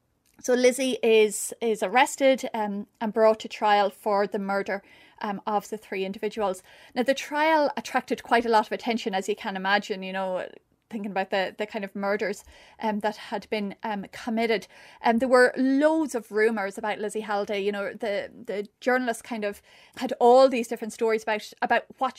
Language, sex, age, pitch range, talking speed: English, female, 30-49, 205-240 Hz, 190 wpm